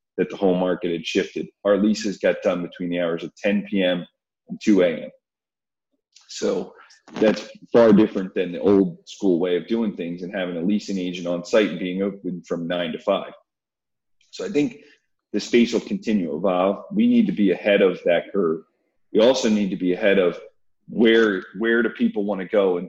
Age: 40-59